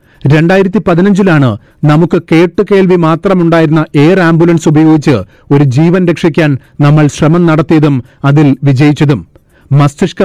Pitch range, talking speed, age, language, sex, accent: 150-175 Hz, 100 wpm, 40-59, Malayalam, male, native